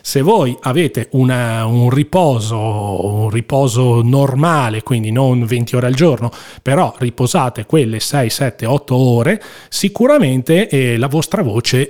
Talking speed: 135 wpm